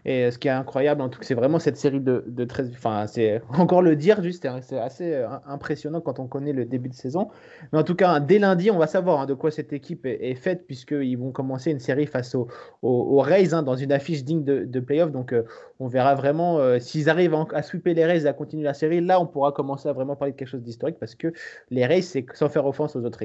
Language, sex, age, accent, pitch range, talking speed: French, male, 20-39, French, 130-175 Hz, 270 wpm